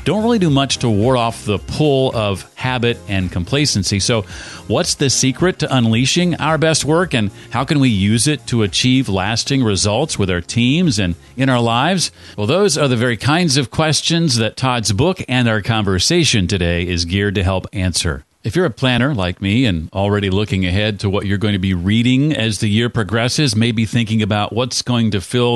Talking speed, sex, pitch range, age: 205 wpm, male, 100-135 Hz, 40-59